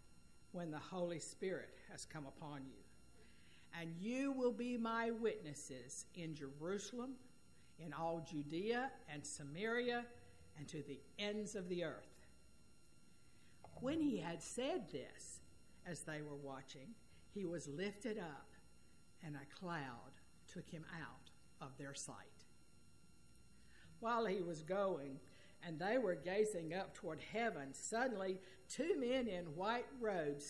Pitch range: 150-220 Hz